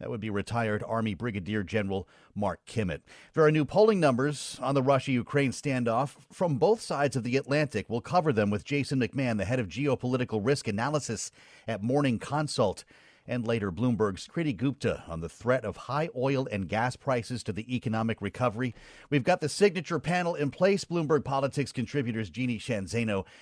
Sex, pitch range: male, 105-140 Hz